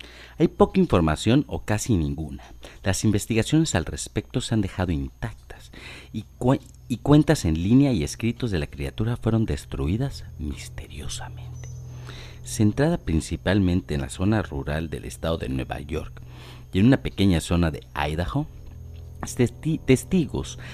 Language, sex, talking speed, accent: Spanish, male, 140 wpm, Mexican